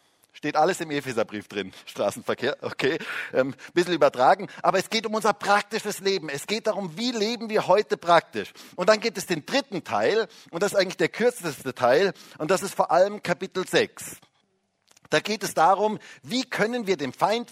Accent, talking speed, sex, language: German, 190 wpm, male, German